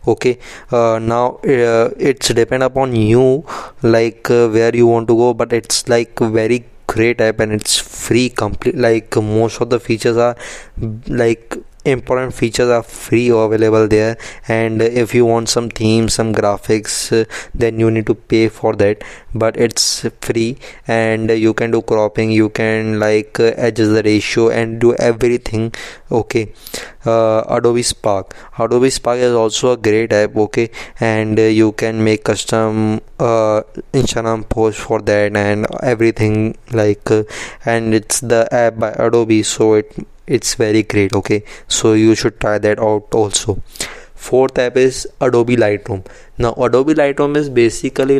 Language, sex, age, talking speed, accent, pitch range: English, male, 20-39, 160 wpm, Indian, 110-120 Hz